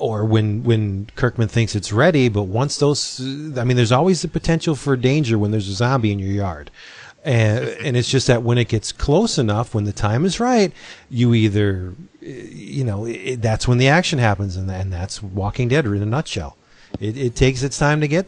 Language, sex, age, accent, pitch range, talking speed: English, male, 40-59, American, 105-140 Hz, 220 wpm